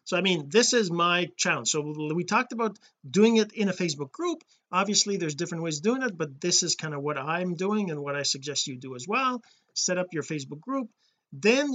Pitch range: 155-205 Hz